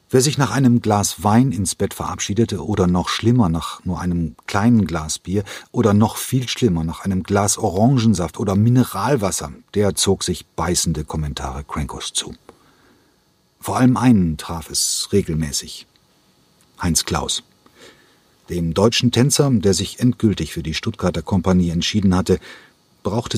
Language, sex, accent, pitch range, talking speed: German, male, German, 85-115 Hz, 145 wpm